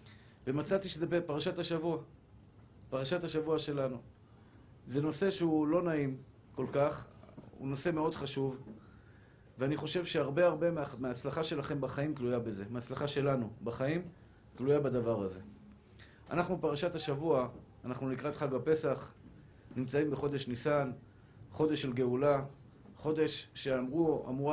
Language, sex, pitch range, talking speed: Hebrew, male, 125-155 Hz, 115 wpm